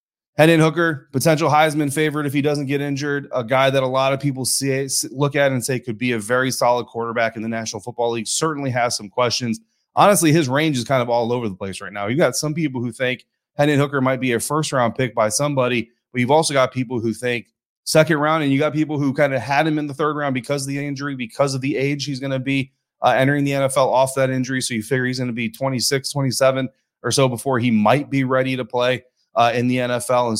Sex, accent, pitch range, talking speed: male, American, 120-145 Hz, 250 wpm